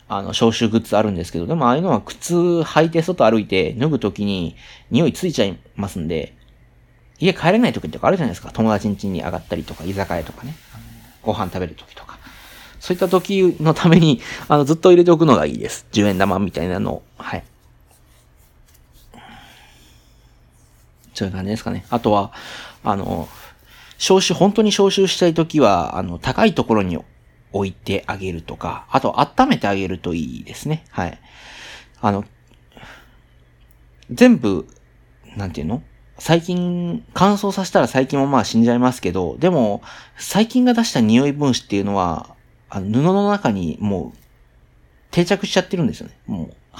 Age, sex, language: 40-59, male, Japanese